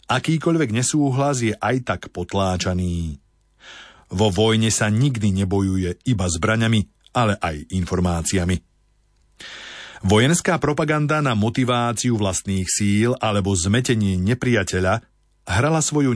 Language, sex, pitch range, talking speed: Slovak, male, 95-120 Hz, 100 wpm